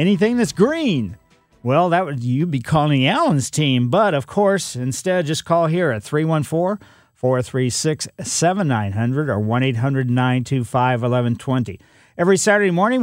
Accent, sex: American, male